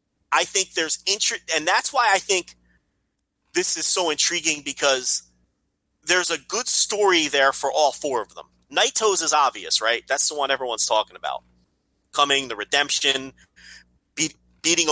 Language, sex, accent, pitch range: English, male, American, 120-150 Hz